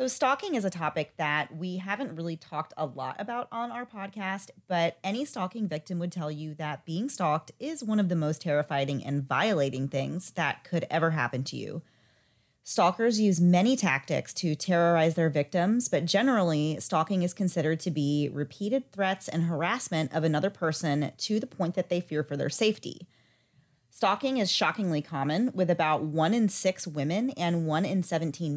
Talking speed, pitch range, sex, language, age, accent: 180 wpm, 150-190 Hz, female, English, 30-49, American